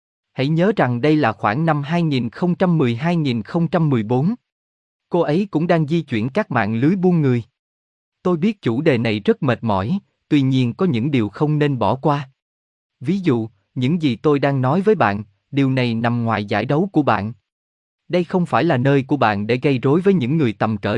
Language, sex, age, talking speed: Vietnamese, male, 20-39, 195 wpm